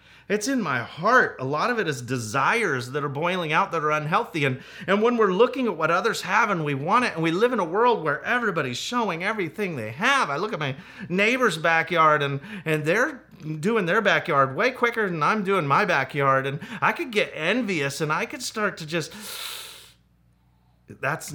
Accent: American